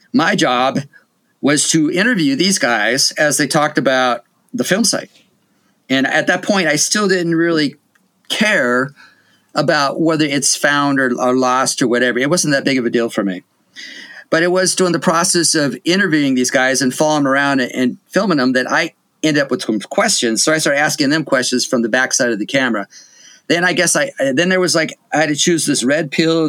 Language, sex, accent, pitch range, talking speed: English, male, American, 130-180 Hz, 215 wpm